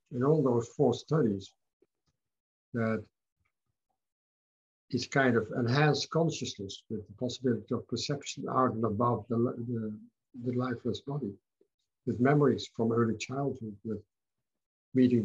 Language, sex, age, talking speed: English, male, 50-69, 120 wpm